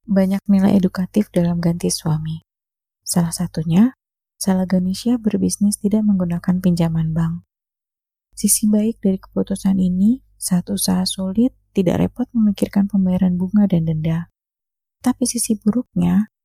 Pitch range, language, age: 175-215 Hz, Indonesian, 20-39